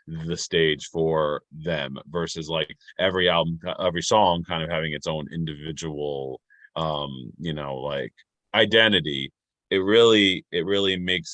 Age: 30-49